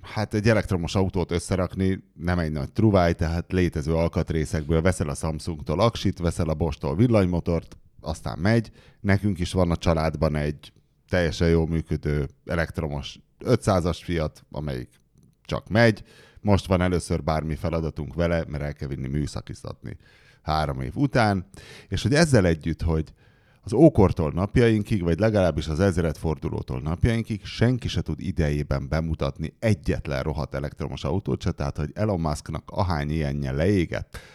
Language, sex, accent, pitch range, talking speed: English, male, Finnish, 80-100 Hz, 140 wpm